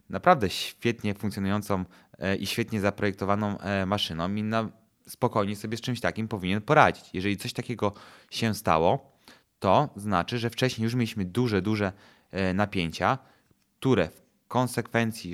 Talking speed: 125 wpm